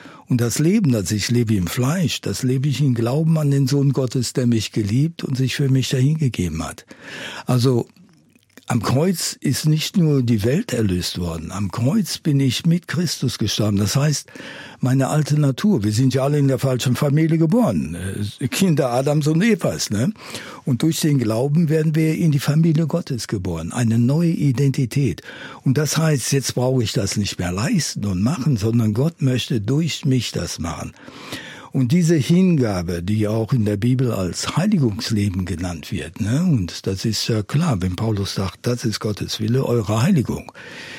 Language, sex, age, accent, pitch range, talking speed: German, male, 60-79, German, 110-150 Hz, 180 wpm